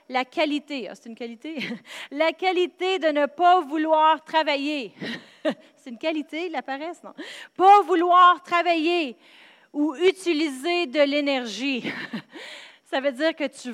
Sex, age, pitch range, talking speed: female, 30-49, 255-320 Hz, 135 wpm